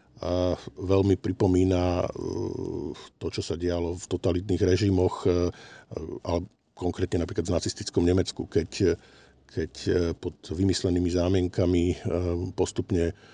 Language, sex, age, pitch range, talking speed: Slovak, male, 50-69, 90-95 Hz, 100 wpm